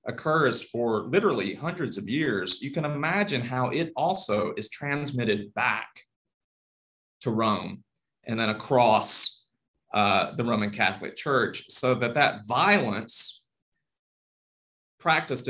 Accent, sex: American, male